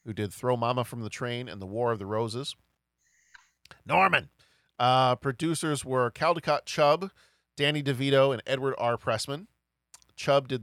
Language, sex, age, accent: English, male, 40-59, American